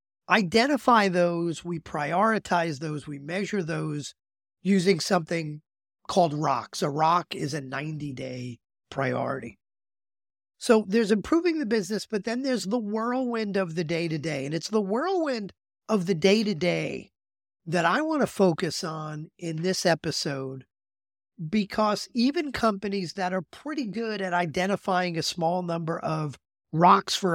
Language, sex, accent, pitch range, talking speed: English, male, American, 155-200 Hz, 135 wpm